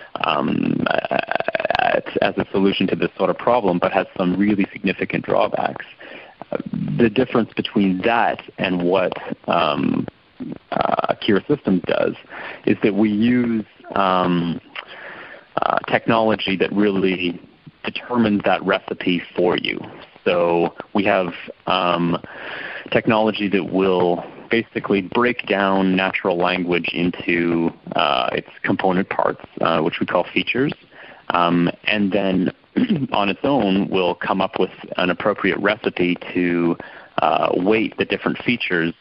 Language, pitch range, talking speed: English, 85-105 Hz, 125 wpm